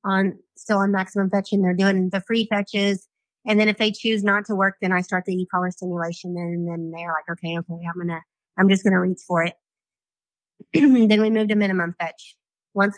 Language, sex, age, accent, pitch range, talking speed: English, female, 30-49, American, 170-200 Hz, 210 wpm